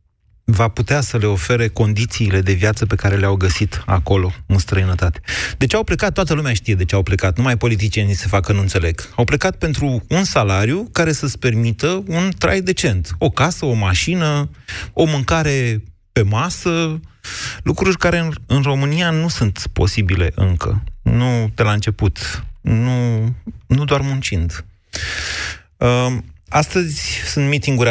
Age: 30-49